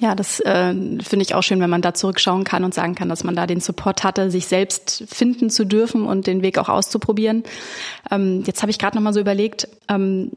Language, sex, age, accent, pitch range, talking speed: German, female, 30-49, German, 190-220 Hz, 235 wpm